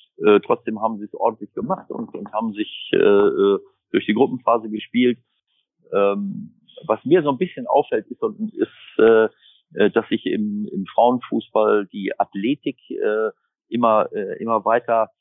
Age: 50-69